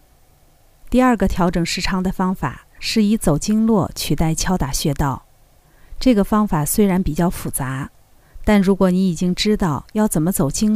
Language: Chinese